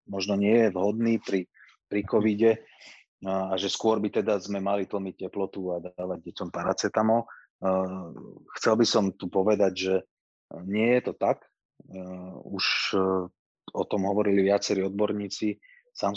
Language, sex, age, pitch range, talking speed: Slovak, male, 30-49, 95-105 Hz, 135 wpm